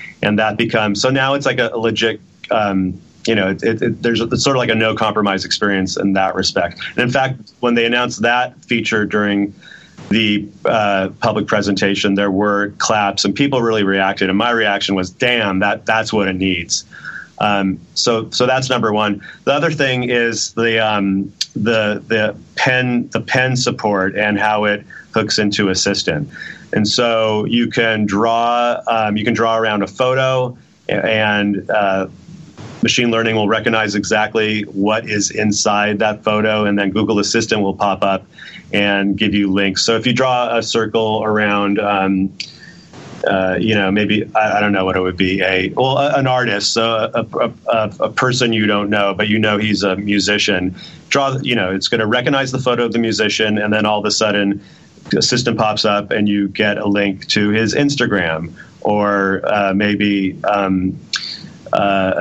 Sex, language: male, English